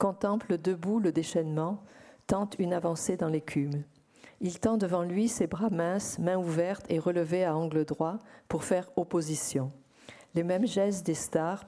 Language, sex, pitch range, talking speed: French, female, 160-195 Hz, 160 wpm